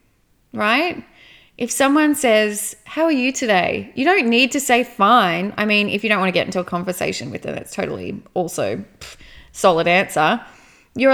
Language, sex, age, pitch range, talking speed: English, female, 20-39, 200-245 Hz, 180 wpm